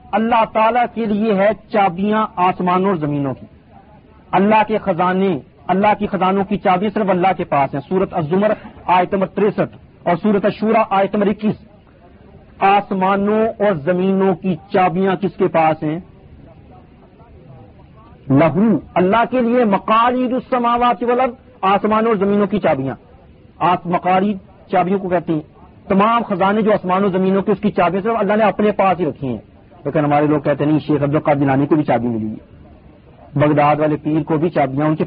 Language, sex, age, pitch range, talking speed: Urdu, male, 50-69, 155-205 Hz, 170 wpm